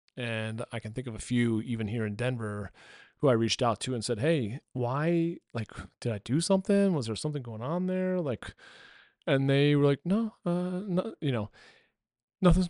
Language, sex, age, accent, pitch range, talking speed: English, male, 30-49, American, 110-140 Hz, 200 wpm